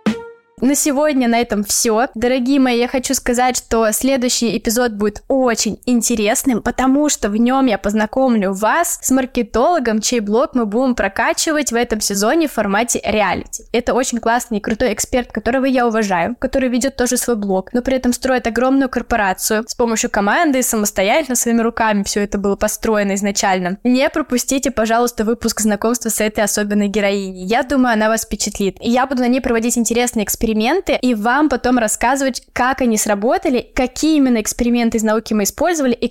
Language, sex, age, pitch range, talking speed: Russian, female, 10-29, 220-265 Hz, 175 wpm